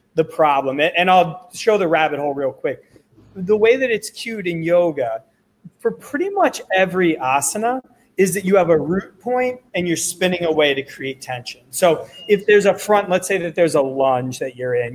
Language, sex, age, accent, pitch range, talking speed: English, male, 30-49, American, 150-200 Hz, 200 wpm